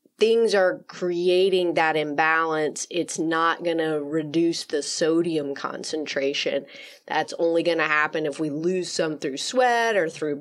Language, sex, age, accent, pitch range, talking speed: English, female, 30-49, American, 160-195 Hz, 150 wpm